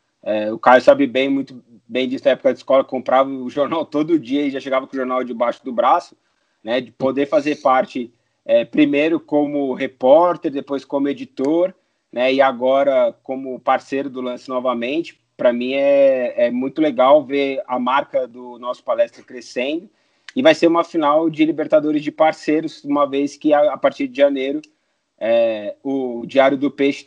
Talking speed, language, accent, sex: 180 wpm, Portuguese, Brazilian, male